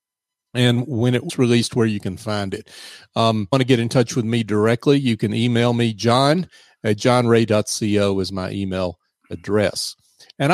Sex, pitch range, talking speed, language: male, 110-135 Hz, 190 wpm, English